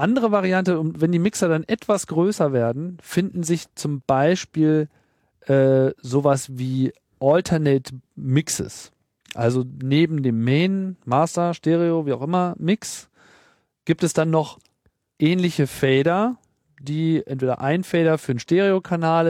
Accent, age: German, 40-59